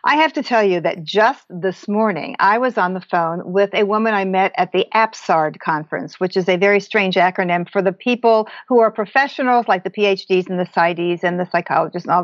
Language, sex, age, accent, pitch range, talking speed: English, female, 50-69, American, 185-230 Hz, 225 wpm